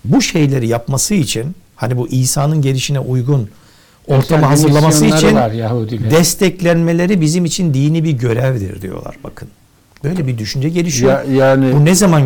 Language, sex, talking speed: Turkish, male, 130 wpm